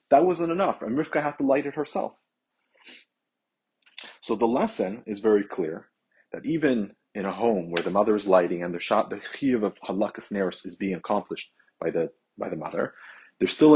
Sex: male